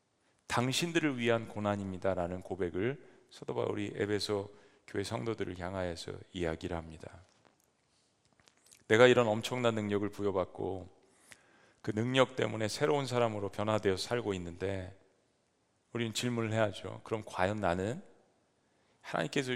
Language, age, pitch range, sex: Korean, 40-59, 95-115 Hz, male